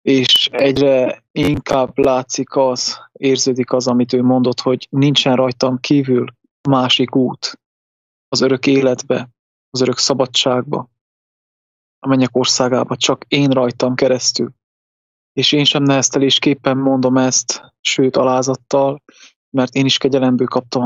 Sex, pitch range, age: male, 125-140 Hz, 20-39